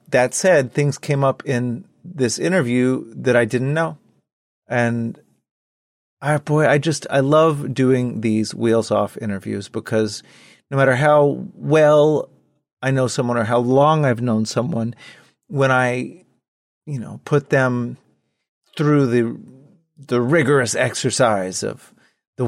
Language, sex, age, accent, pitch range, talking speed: English, male, 30-49, American, 115-145 Hz, 135 wpm